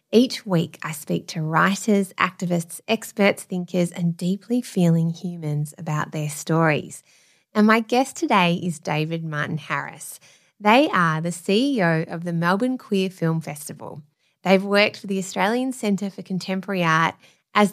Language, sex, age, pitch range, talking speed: English, female, 20-39, 170-220 Hz, 145 wpm